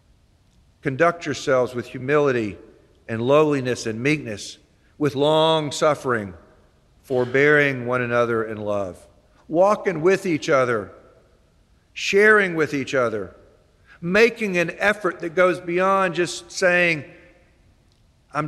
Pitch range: 120-170 Hz